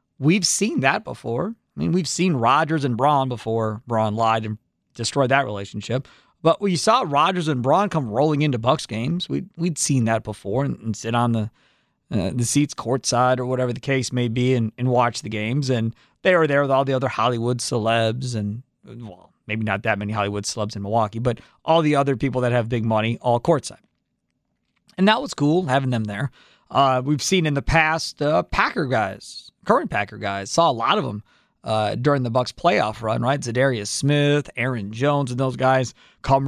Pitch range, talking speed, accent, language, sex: 115-155 Hz, 205 wpm, American, English, male